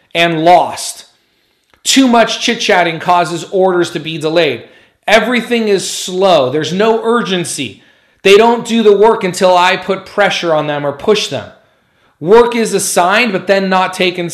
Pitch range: 145-195 Hz